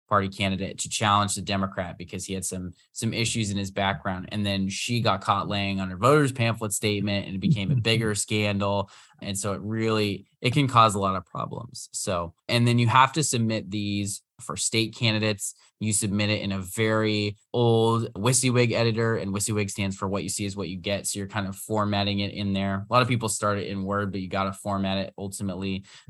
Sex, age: male, 20-39